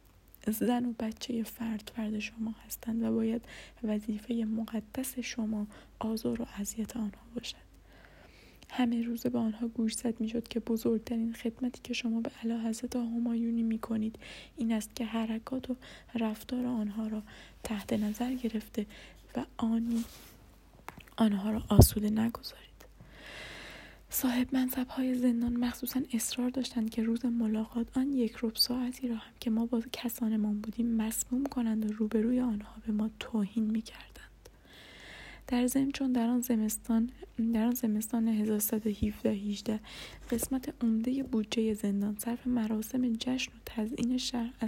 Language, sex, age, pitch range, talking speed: Persian, female, 10-29, 220-245 Hz, 135 wpm